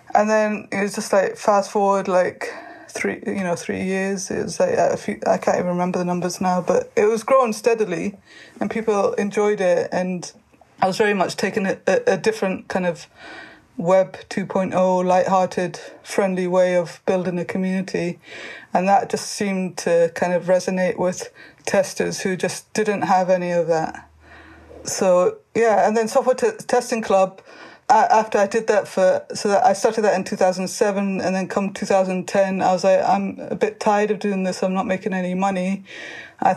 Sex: female